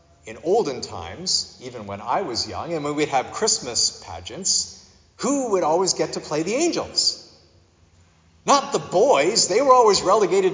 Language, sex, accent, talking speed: English, male, American, 165 wpm